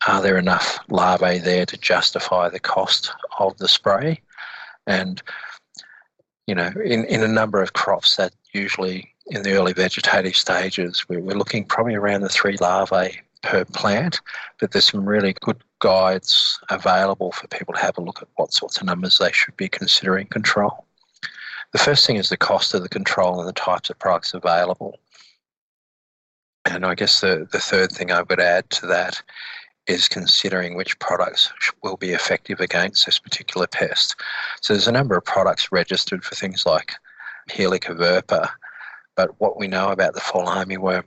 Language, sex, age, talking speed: English, male, 40-59, 170 wpm